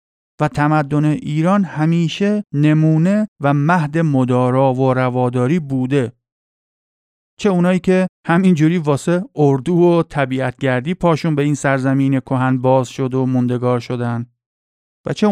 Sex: male